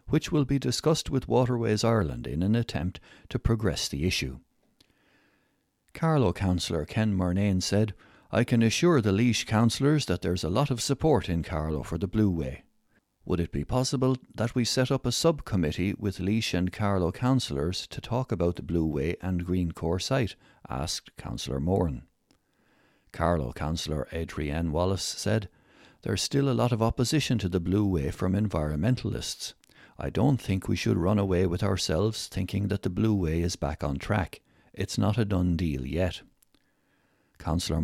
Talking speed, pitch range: 170 wpm, 85-120 Hz